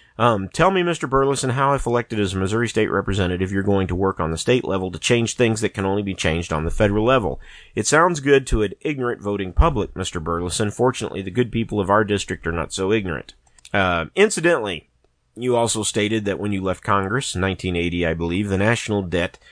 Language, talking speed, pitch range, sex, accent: English, 215 wpm, 90-120 Hz, male, American